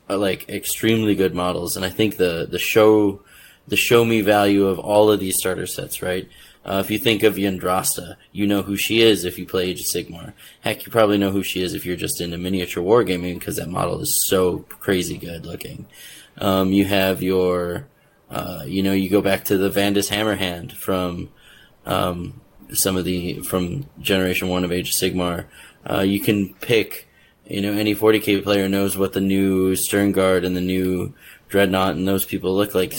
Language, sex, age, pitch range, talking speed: English, male, 20-39, 90-100 Hz, 200 wpm